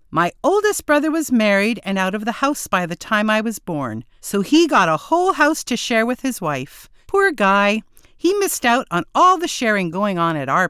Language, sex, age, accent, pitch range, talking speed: English, female, 50-69, American, 175-285 Hz, 225 wpm